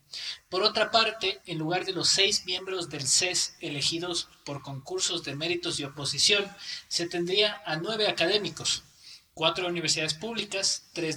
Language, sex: Spanish, male